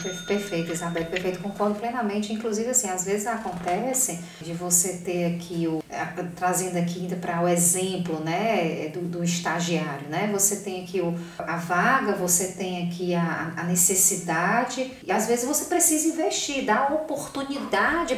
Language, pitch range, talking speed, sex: Portuguese, 180-225 Hz, 150 wpm, female